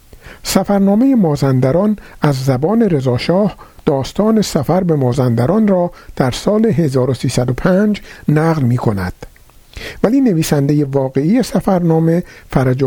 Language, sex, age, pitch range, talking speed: Persian, male, 60-79, 130-200 Hz, 95 wpm